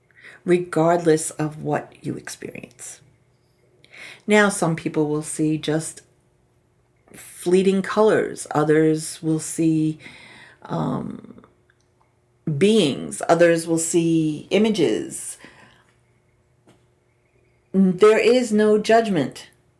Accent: American